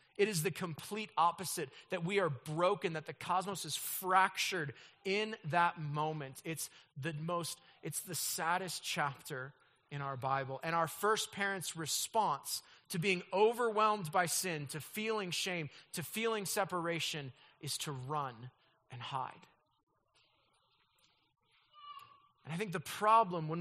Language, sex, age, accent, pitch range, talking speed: English, male, 30-49, American, 165-205 Hz, 135 wpm